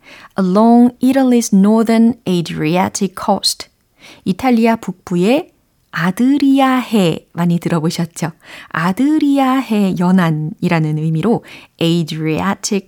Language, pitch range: Korean, 175-250 Hz